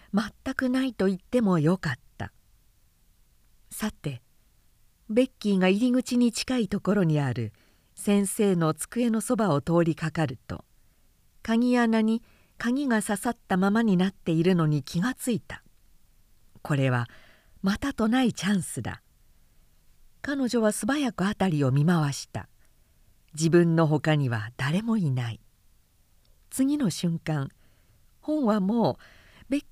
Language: Japanese